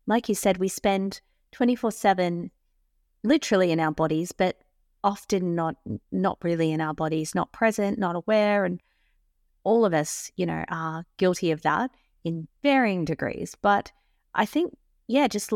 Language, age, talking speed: English, 30-49, 160 wpm